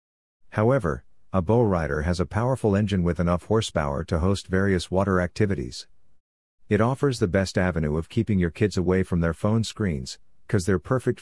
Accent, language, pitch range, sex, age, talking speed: American, English, 80-105 Hz, male, 50-69, 175 wpm